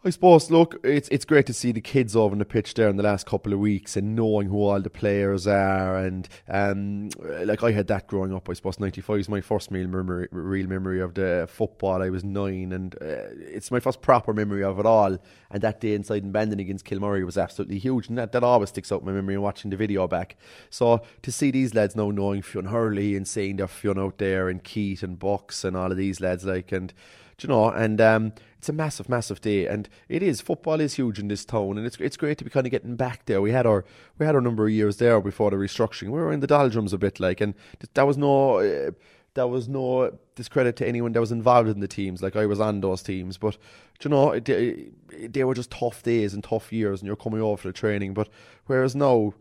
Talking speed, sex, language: 260 wpm, male, English